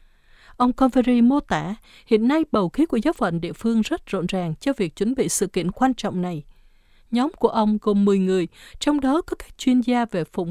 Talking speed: 225 wpm